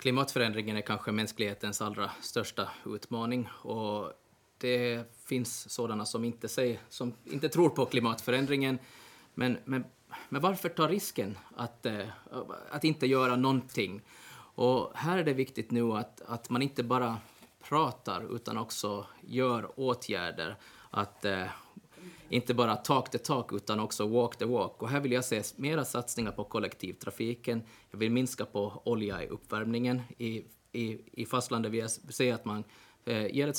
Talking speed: 150 wpm